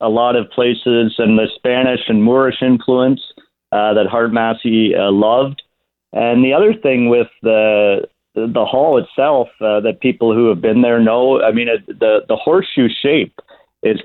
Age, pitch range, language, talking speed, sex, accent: 50-69, 105-130 Hz, English, 180 wpm, male, American